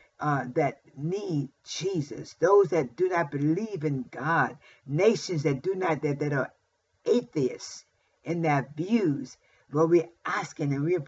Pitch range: 145-185 Hz